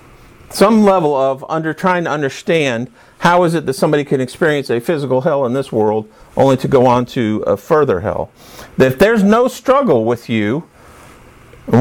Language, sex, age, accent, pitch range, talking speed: English, male, 50-69, American, 125-180 Hz, 185 wpm